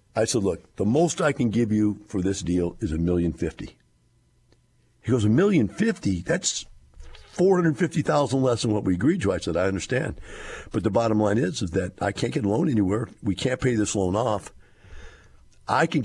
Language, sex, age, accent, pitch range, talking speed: English, male, 60-79, American, 85-110 Hz, 195 wpm